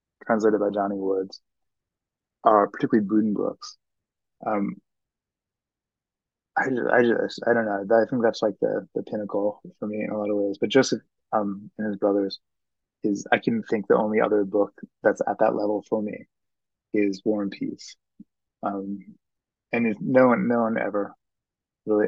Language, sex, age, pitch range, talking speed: English, male, 20-39, 100-110 Hz, 170 wpm